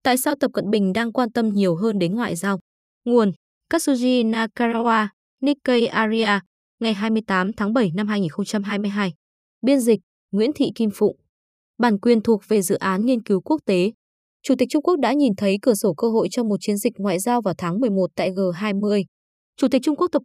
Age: 20-39